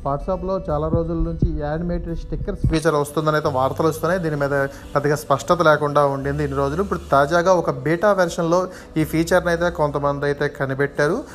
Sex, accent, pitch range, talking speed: male, native, 145-175 Hz, 160 wpm